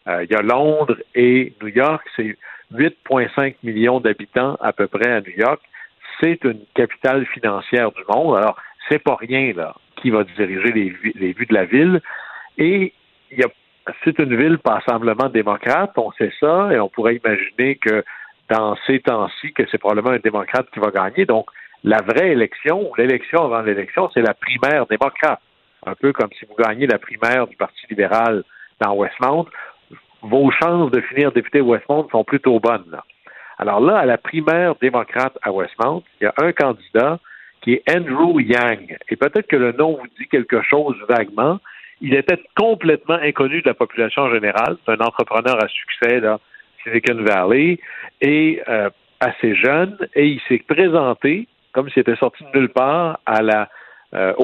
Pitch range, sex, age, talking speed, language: 110-150 Hz, male, 60-79, 175 wpm, French